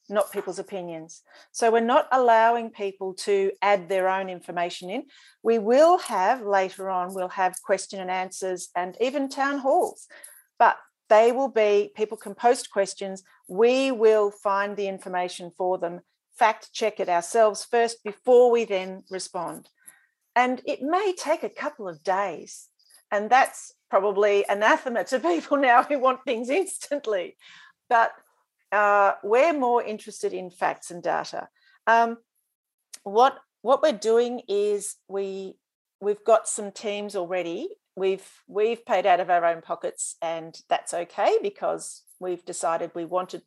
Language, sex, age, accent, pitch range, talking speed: English, female, 40-59, Australian, 185-245 Hz, 150 wpm